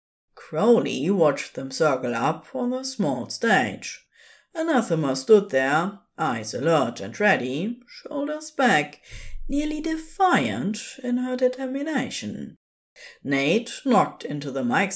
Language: English